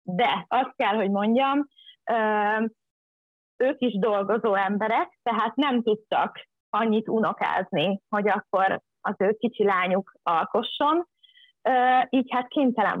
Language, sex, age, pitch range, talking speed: Hungarian, female, 30-49, 205-260 Hz, 120 wpm